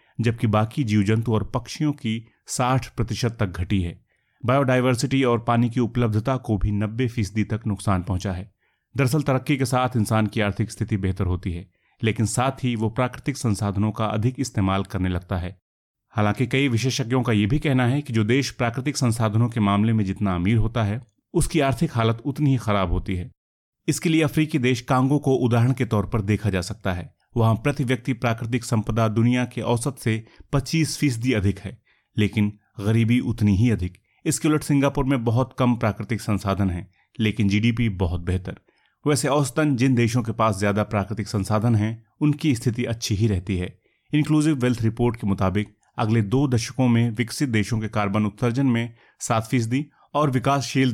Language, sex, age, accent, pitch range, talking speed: Hindi, male, 30-49, native, 105-130 Hz, 185 wpm